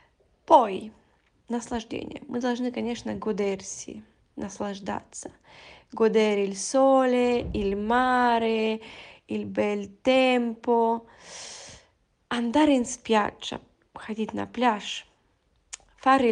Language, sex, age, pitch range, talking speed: Italian, female, 10-29, 215-265 Hz, 80 wpm